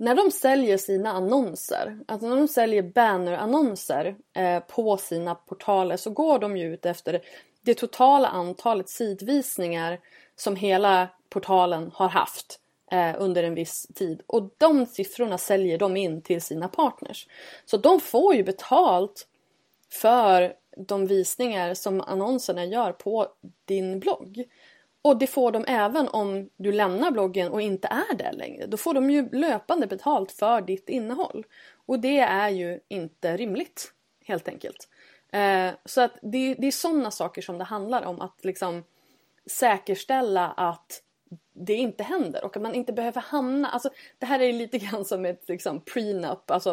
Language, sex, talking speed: Swedish, female, 150 wpm